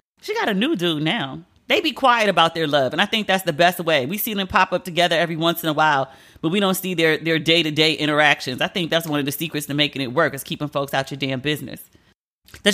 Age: 30-49